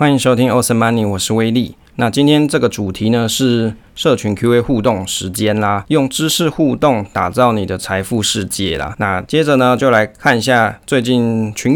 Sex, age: male, 20-39